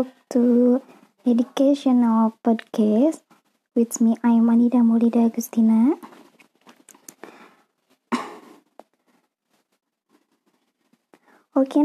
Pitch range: 220-275 Hz